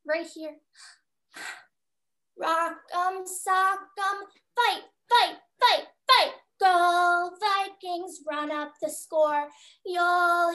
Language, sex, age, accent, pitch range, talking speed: English, female, 10-29, American, 260-390 Hz, 95 wpm